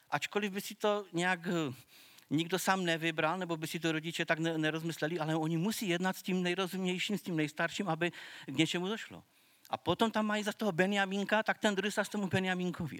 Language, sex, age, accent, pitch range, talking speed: Czech, male, 40-59, native, 140-185 Hz, 195 wpm